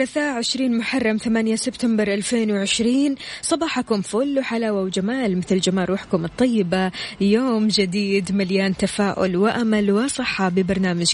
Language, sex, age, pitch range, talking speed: Arabic, female, 20-39, 190-240 Hz, 110 wpm